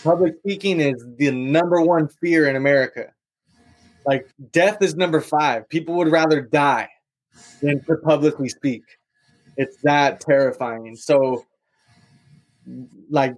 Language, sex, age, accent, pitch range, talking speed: English, male, 20-39, American, 140-170 Hz, 120 wpm